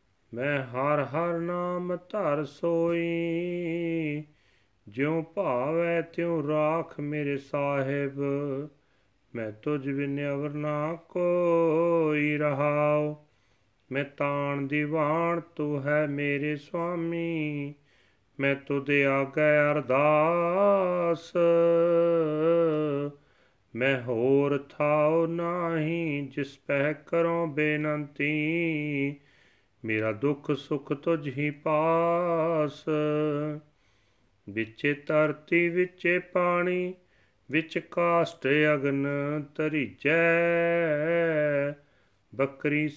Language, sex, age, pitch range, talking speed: Punjabi, male, 40-59, 140-165 Hz, 75 wpm